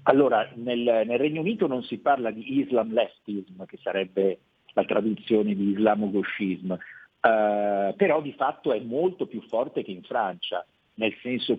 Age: 50-69